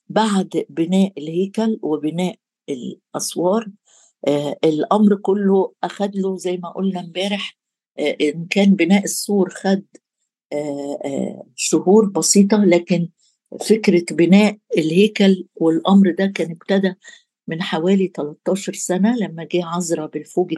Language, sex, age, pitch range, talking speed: Arabic, female, 50-69, 170-210 Hz, 115 wpm